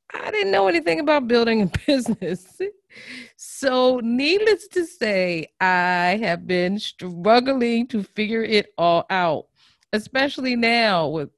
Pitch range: 185-275 Hz